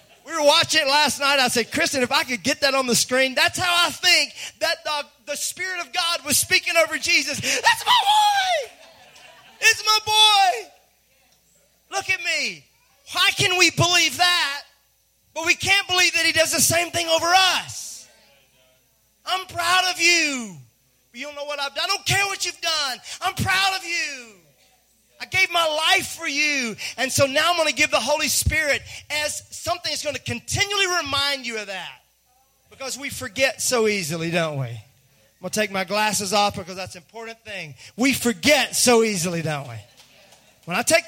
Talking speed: 190 wpm